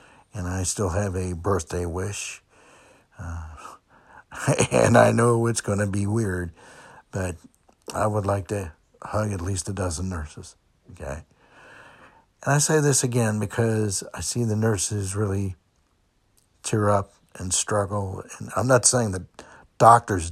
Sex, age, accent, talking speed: male, 60-79, American, 145 wpm